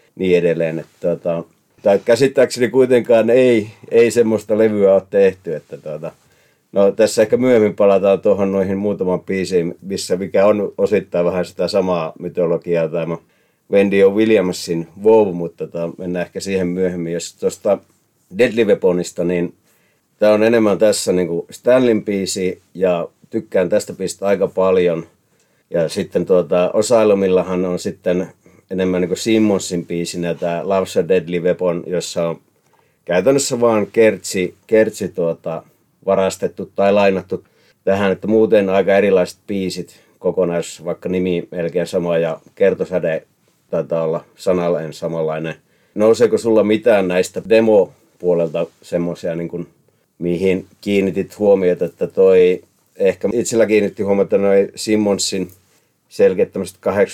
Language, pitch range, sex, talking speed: Finnish, 90-110 Hz, male, 120 wpm